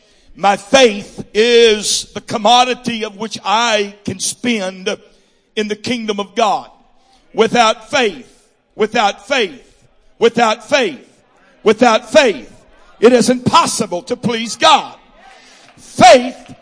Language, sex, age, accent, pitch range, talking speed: English, male, 60-79, American, 235-285 Hz, 110 wpm